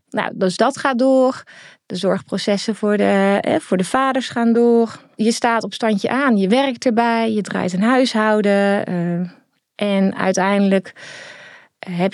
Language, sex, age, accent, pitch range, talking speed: Dutch, female, 20-39, Dutch, 185-235 Hz, 145 wpm